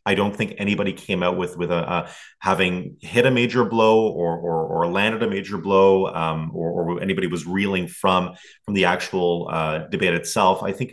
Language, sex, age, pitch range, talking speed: English, male, 30-49, 90-110 Hz, 205 wpm